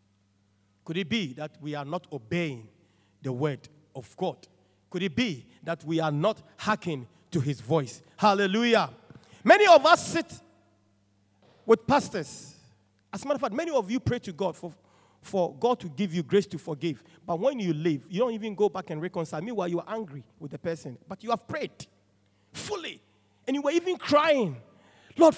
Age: 40-59